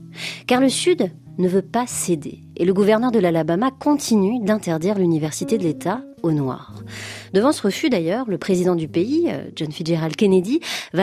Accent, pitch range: French, 160-225 Hz